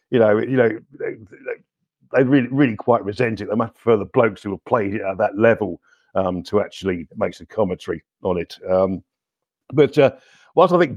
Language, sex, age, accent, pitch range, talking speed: English, male, 50-69, British, 100-140 Hz, 200 wpm